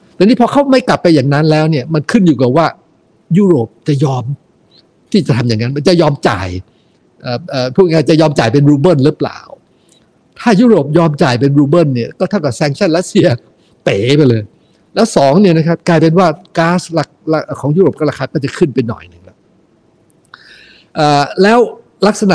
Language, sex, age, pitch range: Thai, male, 60-79, 130-170 Hz